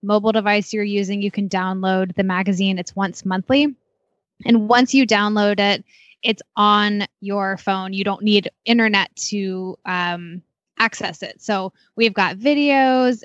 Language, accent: English, American